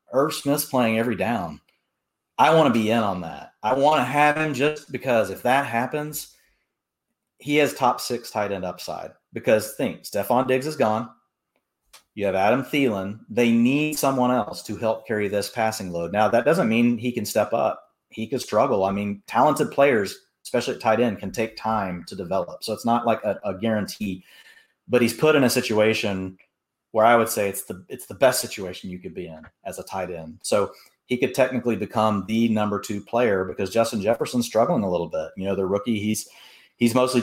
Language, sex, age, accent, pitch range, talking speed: English, male, 30-49, American, 100-125 Hz, 205 wpm